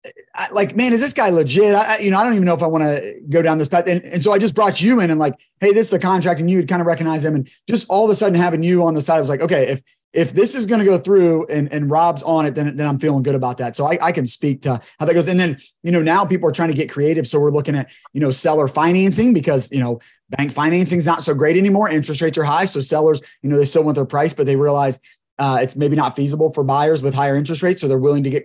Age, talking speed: 30-49, 315 wpm